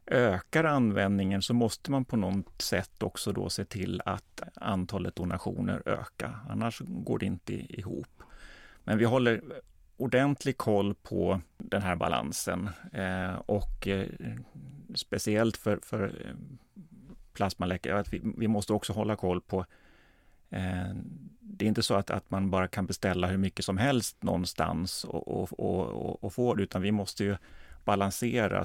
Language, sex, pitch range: Swedish, male, 90-105 Hz